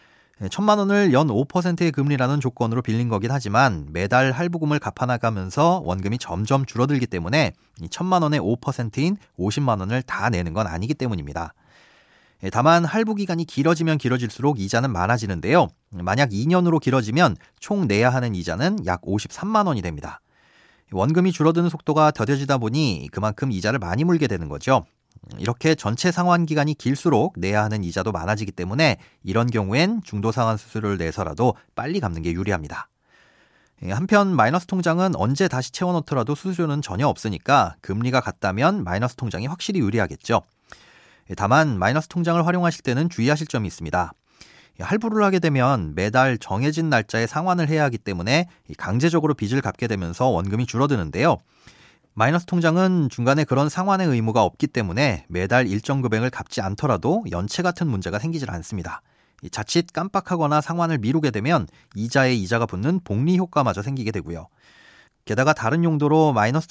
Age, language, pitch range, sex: 40-59, Korean, 105-160 Hz, male